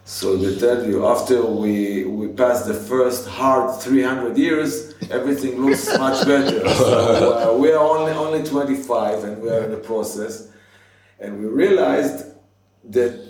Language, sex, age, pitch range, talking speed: English, male, 50-69, 100-145 Hz, 160 wpm